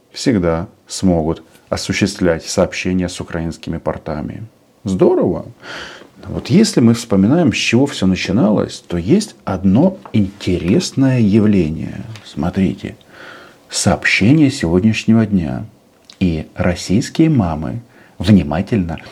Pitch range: 85-115 Hz